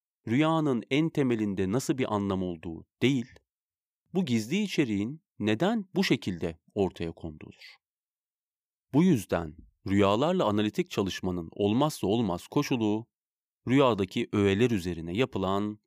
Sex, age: male, 40-59